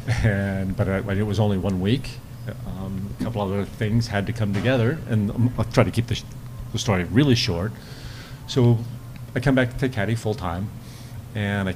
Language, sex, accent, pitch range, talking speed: English, male, American, 100-120 Hz, 195 wpm